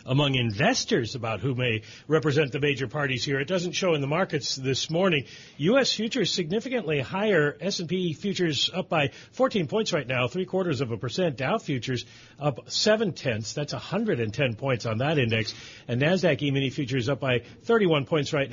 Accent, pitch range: American, 125-175 Hz